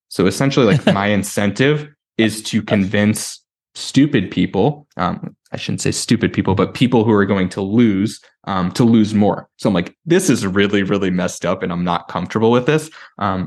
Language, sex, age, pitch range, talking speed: English, male, 20-39, 95-115 Hz, 190 wpm